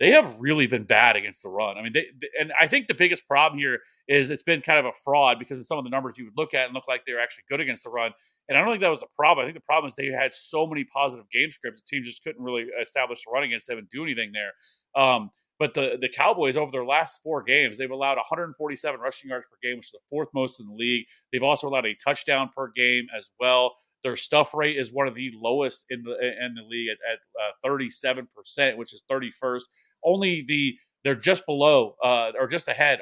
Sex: male